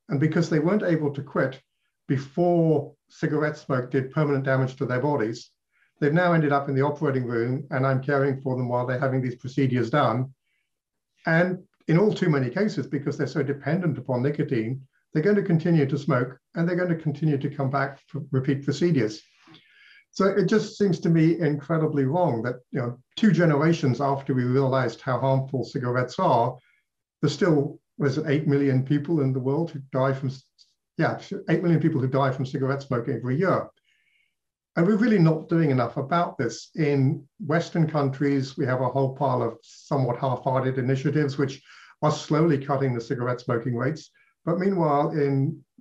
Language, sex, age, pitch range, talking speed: English, male, 60-79, 135-160 Hz, 180 wpm